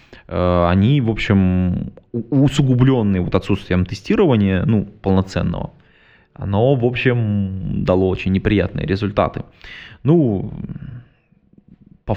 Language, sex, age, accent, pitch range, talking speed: Russian, male, 20-39, native, 95-110 Hz, 90 wpm